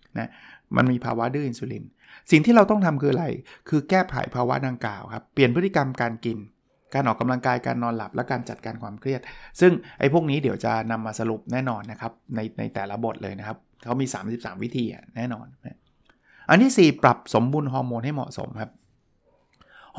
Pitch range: 115-145 Hz